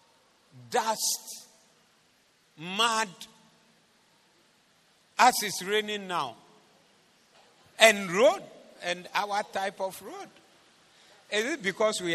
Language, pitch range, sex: English, 165-230 Hz, male